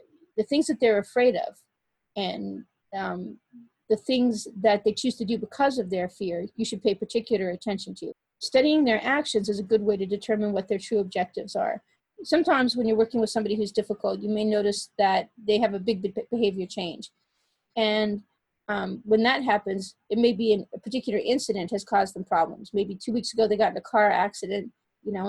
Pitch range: 200-230 Hz